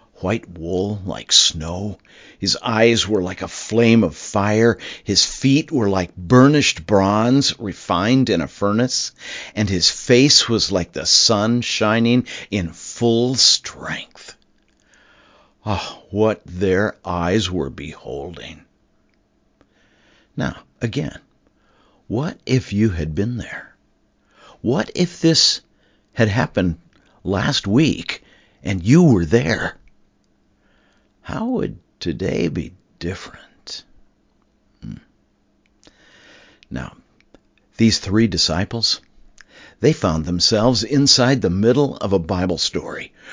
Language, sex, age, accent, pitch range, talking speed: English, male, 50-69, American, 95-125 Hz, 110 wpm